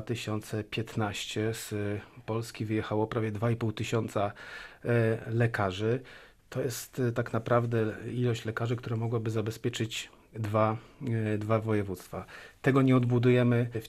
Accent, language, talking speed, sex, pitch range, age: native, Polish, 105 wpm, male, 110-120 Hz, 40-59